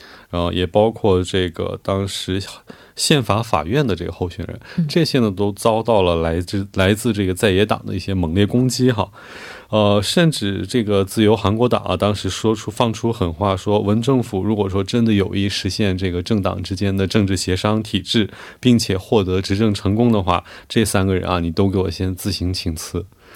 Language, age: Korean, 20-39